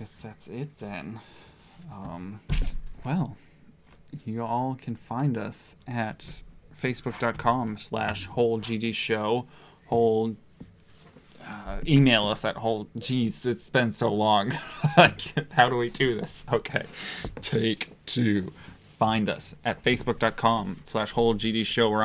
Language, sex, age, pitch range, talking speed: English, male, 20-39, 105-120 Hz, 120 wpm